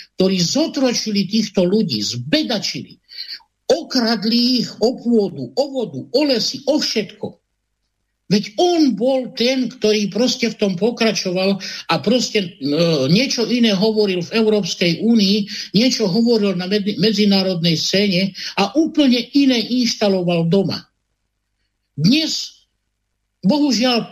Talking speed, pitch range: 115 wpm, 180-230 Hz